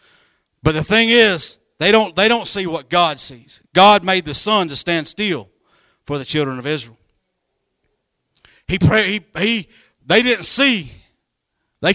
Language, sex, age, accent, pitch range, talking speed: English, male, 40-59, American, 145-200 Hz, 160 wpm